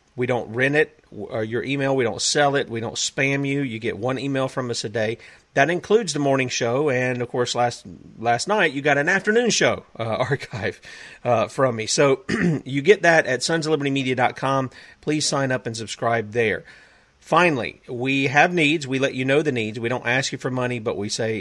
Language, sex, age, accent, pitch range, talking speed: English, male, 40-59, American, 115-135 Hz, 210 wpm